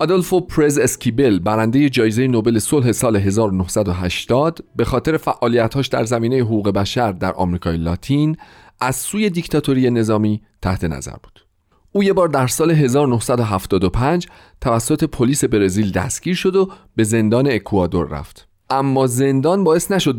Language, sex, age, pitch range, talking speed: Persian, male, 40-59, 105-160 Hz, 135 wpm